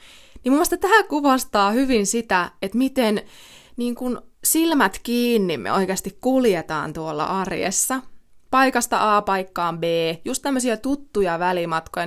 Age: 20-39